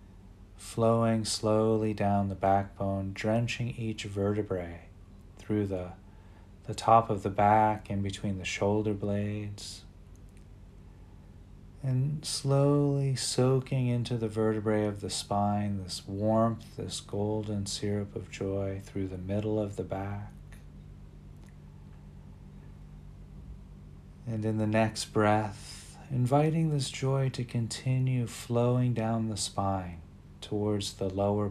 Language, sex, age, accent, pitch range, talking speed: English, male, 40-59, American, 95-110 Hz, 110 wpm